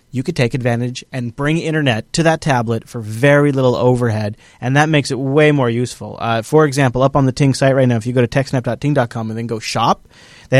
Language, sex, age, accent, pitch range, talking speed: English, male, 30-49, American, 125-155 Hz, 230 wpm